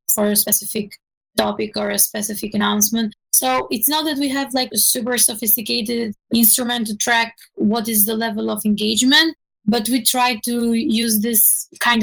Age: 20-39